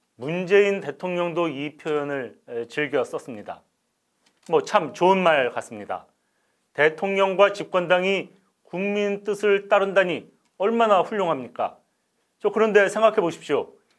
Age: 40-59